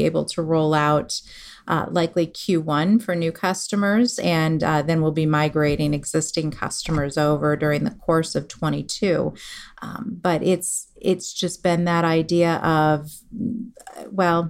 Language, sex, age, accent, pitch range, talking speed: English, female, 40-59, American, 155-185 Hz, 140 wpm